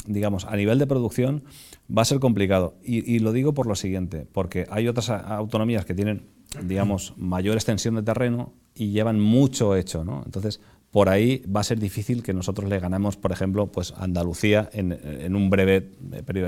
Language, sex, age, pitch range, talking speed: Spanish, male, 30-49, 90-115 Hz, 190 wpm